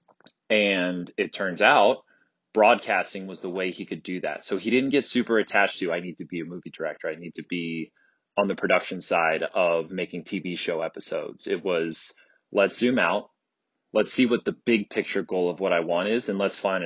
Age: 20-39